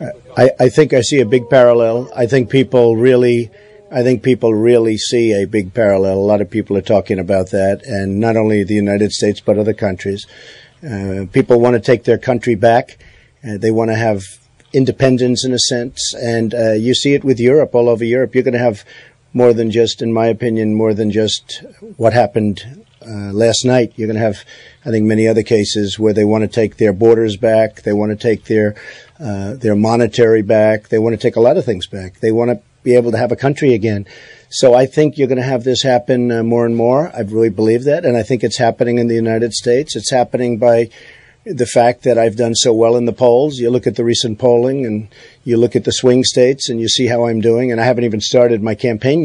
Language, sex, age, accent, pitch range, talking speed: English, male, 50-69, American, 110-125 Hz, 235 wpm